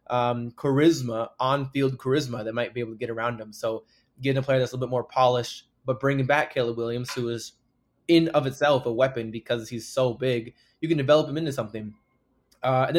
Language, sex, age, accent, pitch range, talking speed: English, male, 20-39, American, 120-140 Hz, 210 wpm